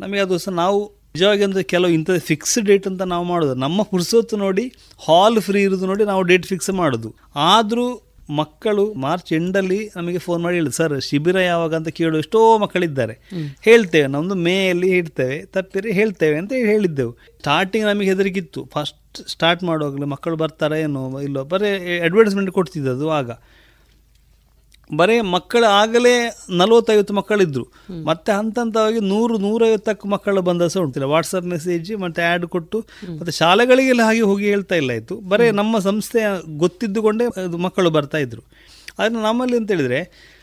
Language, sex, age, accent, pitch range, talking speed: Kannada, male, 30-49, native, 160-205 Hz, 140 wpm